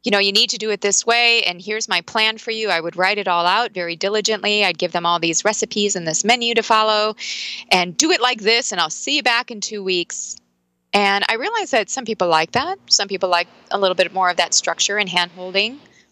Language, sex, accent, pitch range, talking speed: English, female, American, 170-215 Hz, 250 wpm